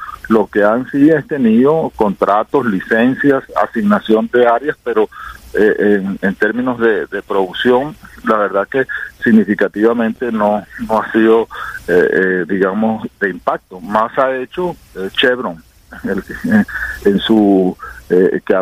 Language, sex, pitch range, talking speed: English, male, 110-160 Hz, 135 wpm